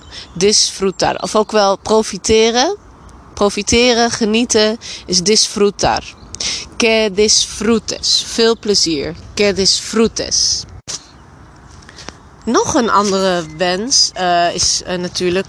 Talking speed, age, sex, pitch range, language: 90 wpm, 30-49, female, 170-205 Hz, Dutch